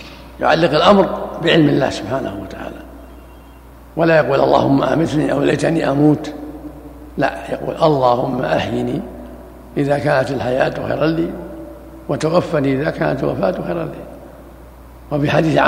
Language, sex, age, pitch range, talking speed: Arabic, male, 60-79, 135-165 Hz, 115 wpm